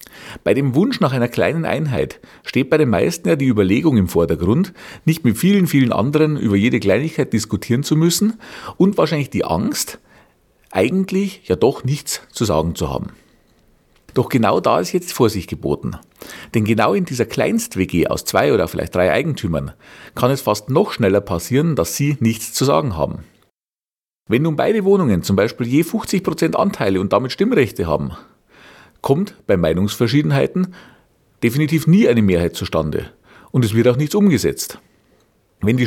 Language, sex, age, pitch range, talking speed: German, male, 50-69, 105-170 Hz, 165 wpm